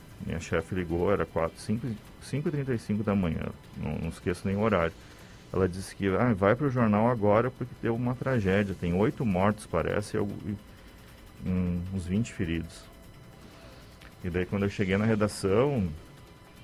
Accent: Brazilian